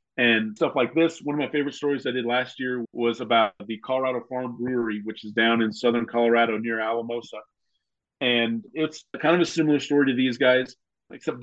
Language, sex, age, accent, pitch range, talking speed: English, male, 40-59, American, 115-135 Hz, 200 wpm